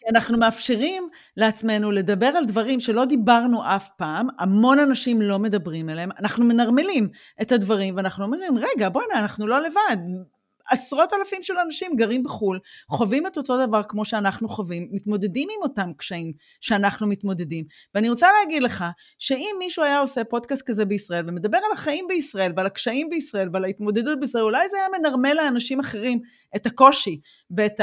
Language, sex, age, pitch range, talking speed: Hebrew, female, 30-49, 195-275 Hz, 160 wpm